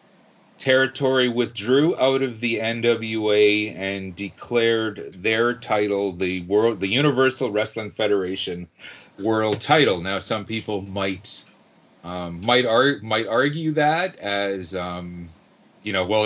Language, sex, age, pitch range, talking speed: English, male, 40-59, 95-125 Hz, 120 wpm